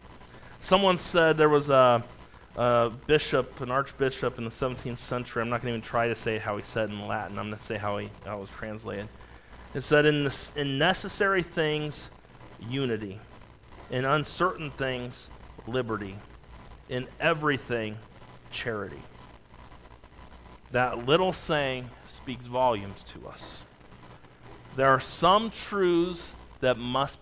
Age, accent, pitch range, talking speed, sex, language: 40-59, American, 105-150 Hz, 145 wpm, male, English